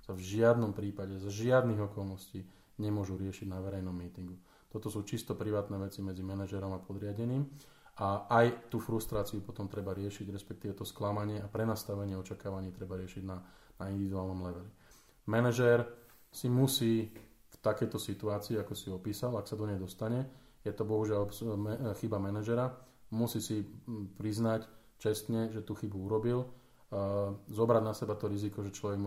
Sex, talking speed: male, 155 wpm